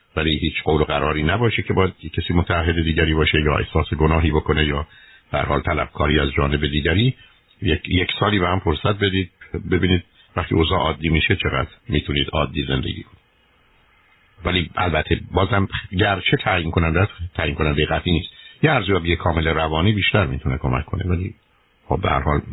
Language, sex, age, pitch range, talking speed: Persian, male, 50-69, 75-95 Hz, 175 wpm